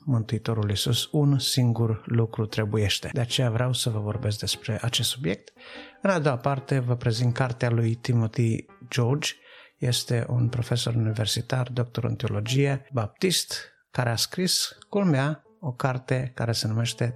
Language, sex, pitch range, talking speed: Romanian, male, 110-135 Hz, 145 wpm